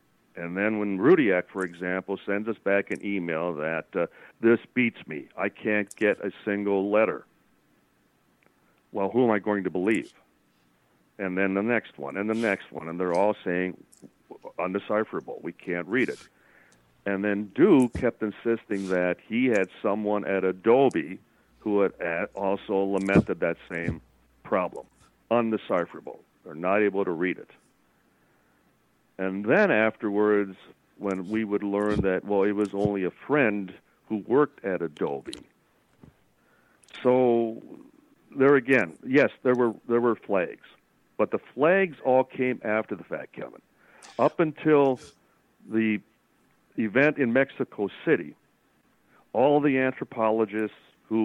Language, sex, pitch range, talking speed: English, male, 95-115 Hz, 140 wpm